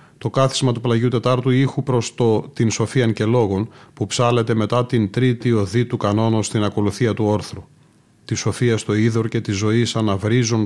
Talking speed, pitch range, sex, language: 180 wpm, 110-130 Hz, male, Greek